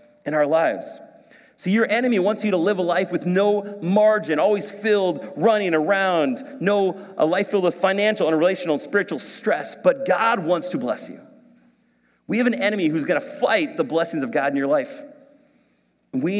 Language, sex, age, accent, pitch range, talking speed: English, male, 40-59, American, 180-260 Hz, 190 wpm